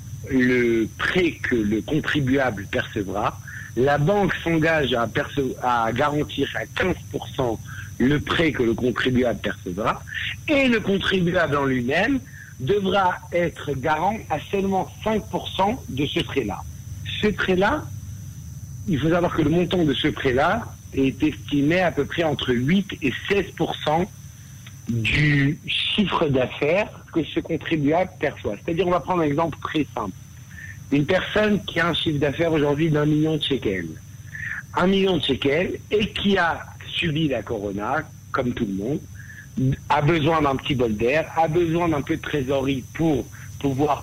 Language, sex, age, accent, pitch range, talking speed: French, male, 60-79, French, 120-160 Hz, 150 wpm